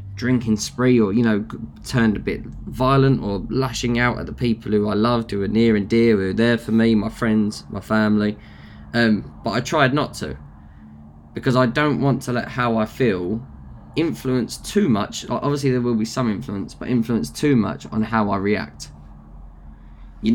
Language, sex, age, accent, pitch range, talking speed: English, male, 20-39, British, 95-120 Hz, 190 wpm